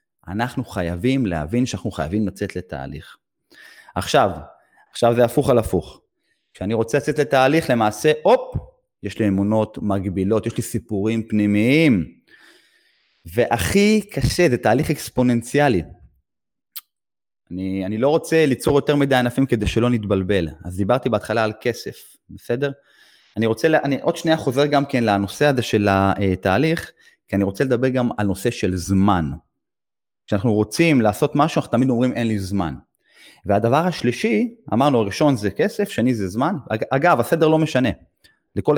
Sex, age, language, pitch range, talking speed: male, 30-49, Hebrew, 100-140 Hz, 145 wpm